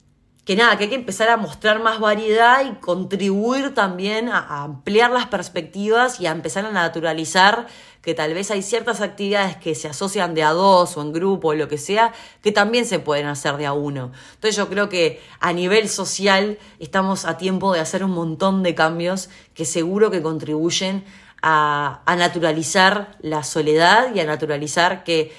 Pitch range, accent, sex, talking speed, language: 160-205 Hz, Argentinian, female, 185 wpm, Spanish